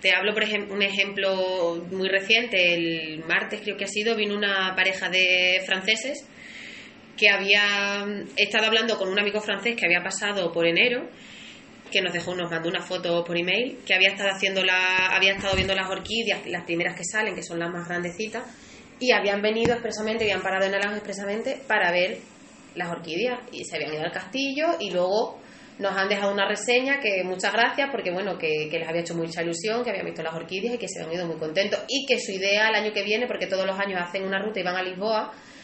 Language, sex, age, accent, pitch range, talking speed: Spanish, female, 20-39, Spanish, 180-220 Hz, 215 wpm